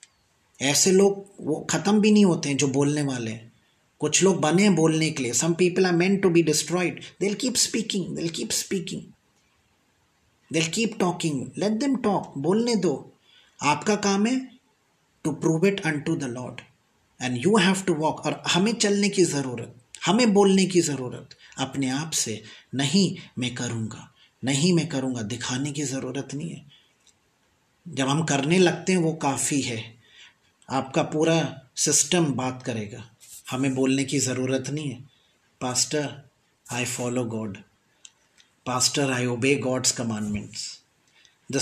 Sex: male